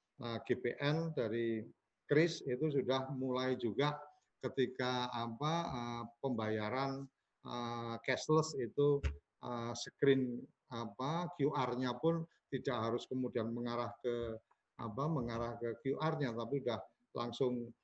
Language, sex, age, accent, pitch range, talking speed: Indonesian, male, 50-69, native, 120-145 Hz, 110 wpm